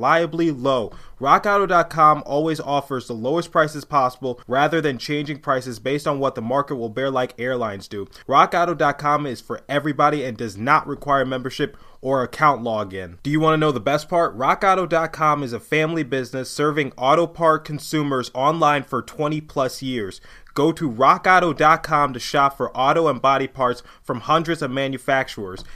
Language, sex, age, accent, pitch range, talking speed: English, male, 20-39, American, 130-155 Hz, 165 wpm